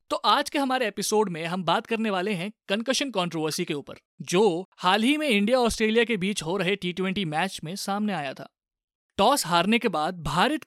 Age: 20-39